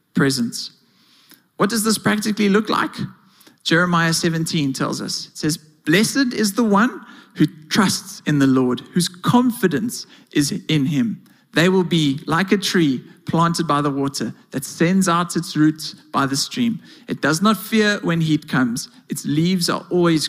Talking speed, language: 165 wpm, English